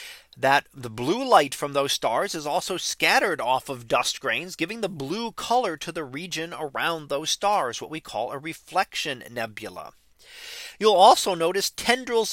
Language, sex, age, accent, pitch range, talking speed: English, male, 40-59, American, 160-215 Hz, 165 wpm